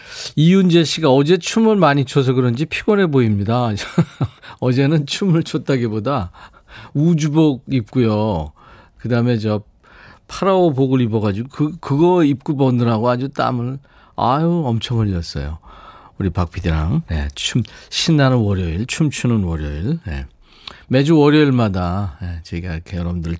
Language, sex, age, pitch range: Korean, male, 40-59, 100-145 Hz